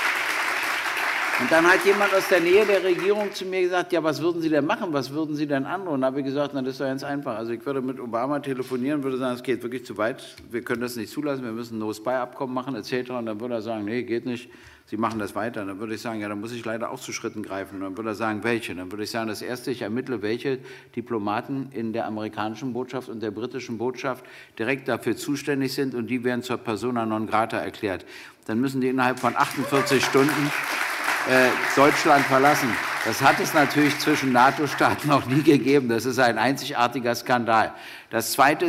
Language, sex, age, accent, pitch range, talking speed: German, male, 50-69, German, 120-140 Hz, 225 wpm